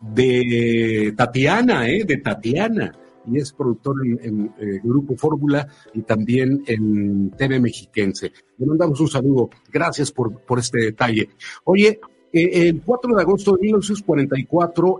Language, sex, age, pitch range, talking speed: Spanish, male, 50-69, 115-160 Hz, 140 wpm